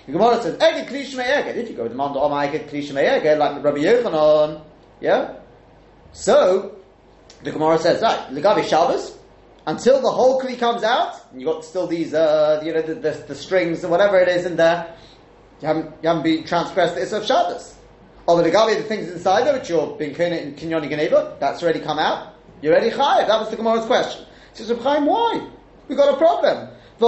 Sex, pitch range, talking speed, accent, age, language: male, 160-250 Hz, 210 wpm, British, 30-49, English